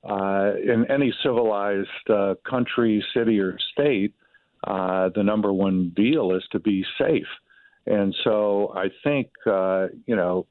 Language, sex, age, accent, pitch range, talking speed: English, male, 50-69, American, 95-100 Hz, 145 wpm